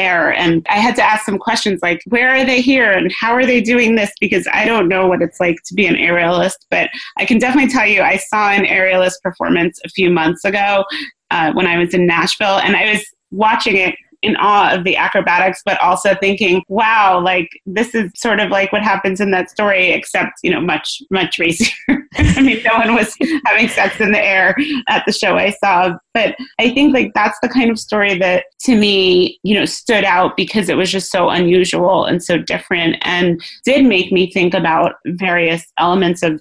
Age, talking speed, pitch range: 30-49, 215 wpm, 180-215 Hz